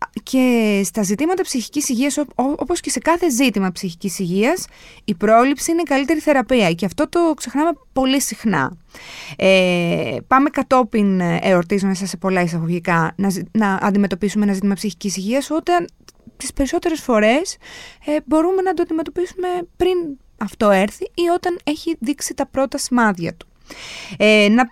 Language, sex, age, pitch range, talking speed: Greek, female, 20-39, 195-305 Hz, 140 wpm